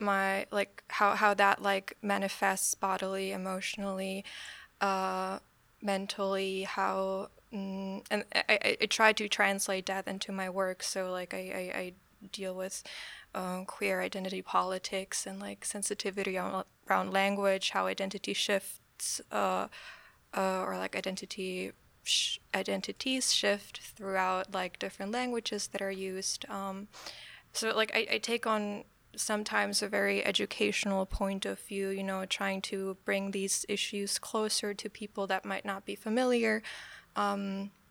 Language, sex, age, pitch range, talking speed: Czech, female, 10-29, 190-200 Hz, 135 wpm